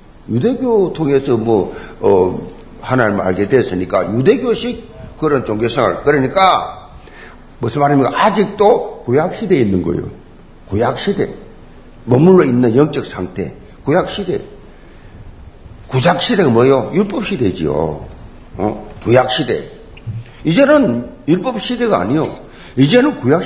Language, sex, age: Korean, male, 50-69